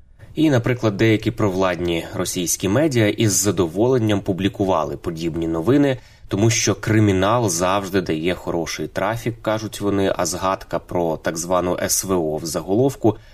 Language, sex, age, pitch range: Ukrainian, male, 20-39, 90-110 Hz